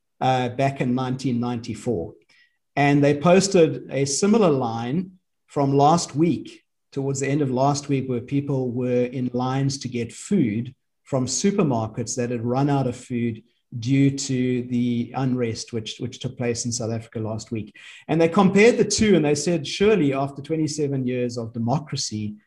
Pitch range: 120-140 Hz